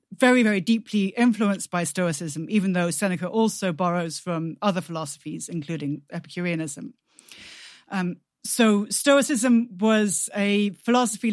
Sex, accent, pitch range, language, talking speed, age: female, British, 185-225 Hz, English, 115 wpm, 40-59